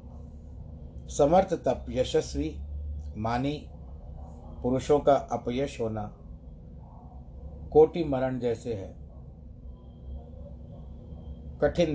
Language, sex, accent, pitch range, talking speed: Hindi, male, native, 75-120 Hz, 65 wpm